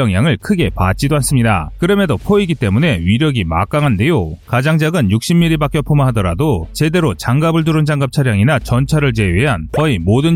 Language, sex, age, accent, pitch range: Korean, male, 30-49, native, 110-165 Hz